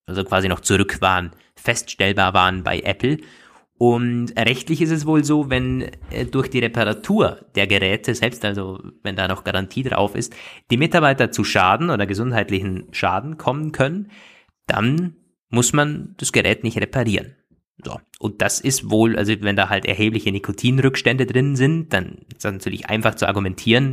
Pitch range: 105-135 Hz